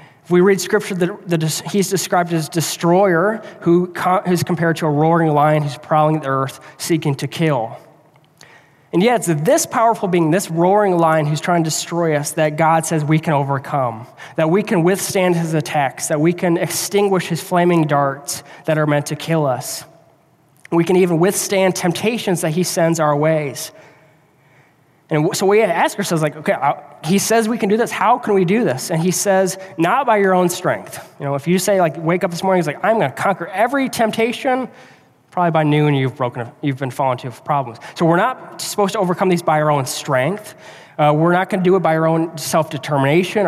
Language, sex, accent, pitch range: English, male, American, 150-185 Hz